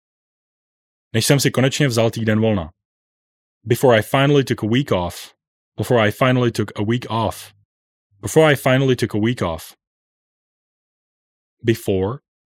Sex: male